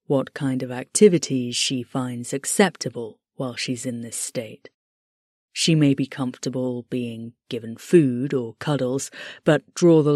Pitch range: 125-165 Hz